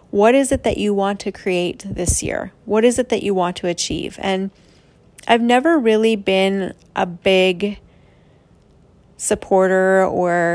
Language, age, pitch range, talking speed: English, 30-49, 185-210 Hz, 155 wpm